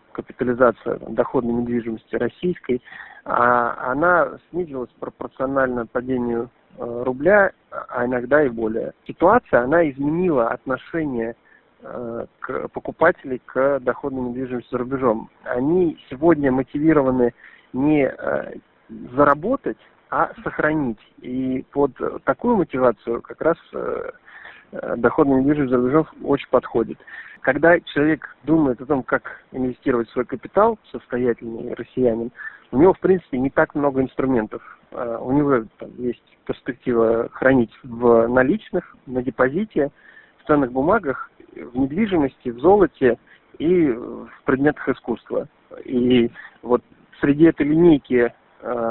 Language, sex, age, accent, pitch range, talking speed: Russian, male, 40-59, native, 125-160 Hz, 110 wpm